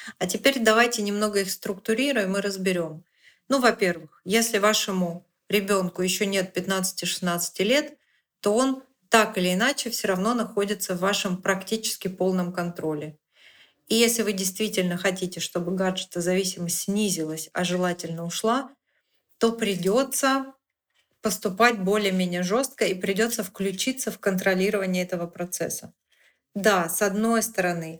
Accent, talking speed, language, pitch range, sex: native, 125 wpm, Russian, 185-225 Hz, female